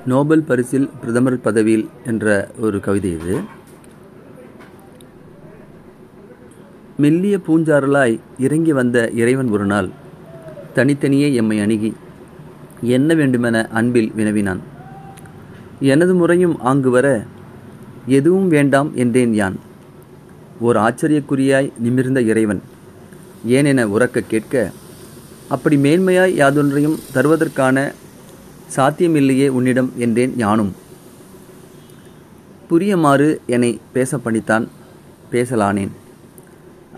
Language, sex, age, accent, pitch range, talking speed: Tamil, male, 30-49, native, 115-155 Hz, 80 wpm